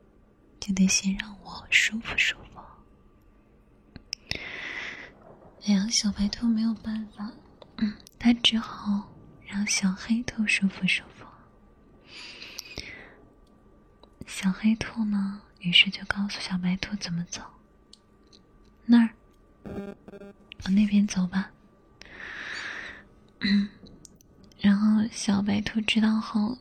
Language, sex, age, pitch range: Chinese, female, 20-39, 200-225 Hz